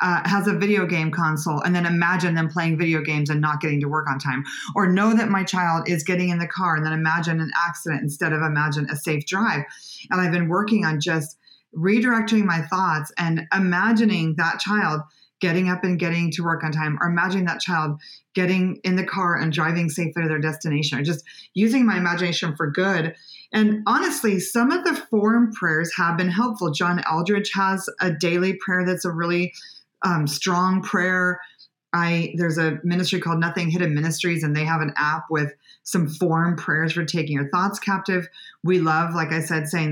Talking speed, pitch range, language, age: 200 wpm, 160-190 Hz, English, 30-49